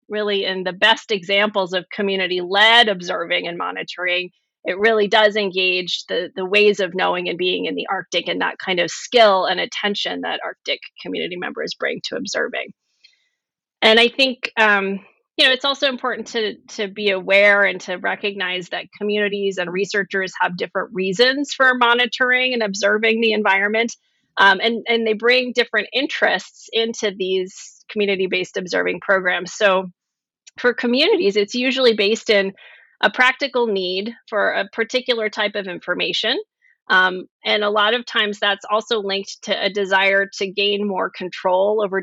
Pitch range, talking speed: 185-230 Hz, 160 wpm